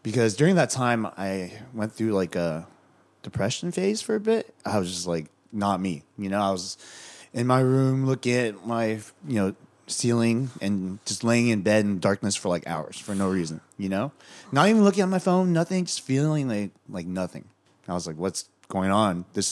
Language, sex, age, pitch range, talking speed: English, male, 30-49, 95-125 Hz, 205 wpm